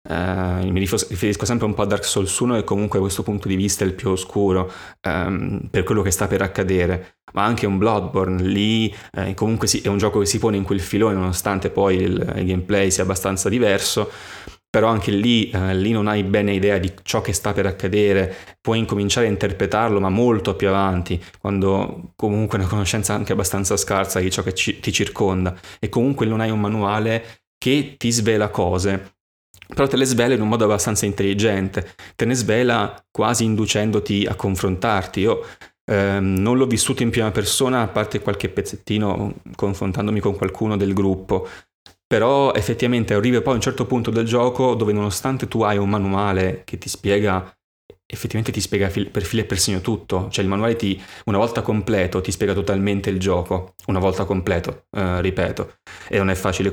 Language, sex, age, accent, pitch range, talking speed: Italian, male, 20-39, native, 95-110 Hz, 190 wpm